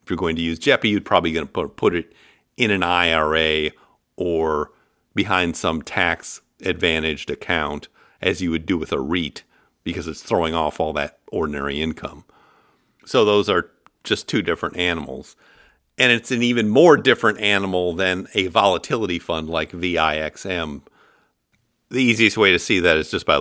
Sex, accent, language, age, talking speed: male, American, English, 50-69, 165 wpm